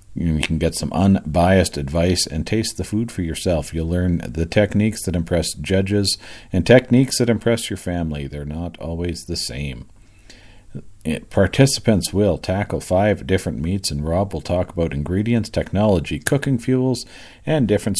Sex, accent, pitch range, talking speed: male, American, 80-100 Hz, 155 wpm